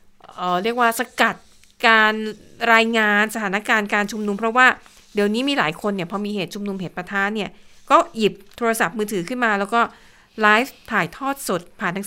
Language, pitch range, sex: Thai, 190-235 Hz, female